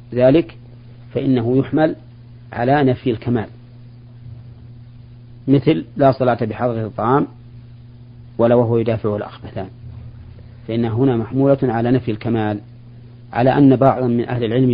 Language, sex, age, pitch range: Arabic, male, 40-59, 115-125 Hz